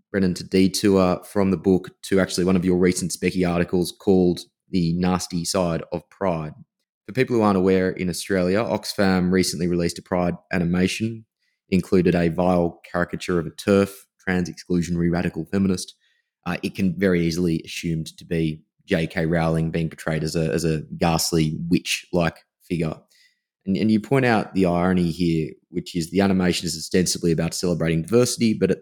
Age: 20-39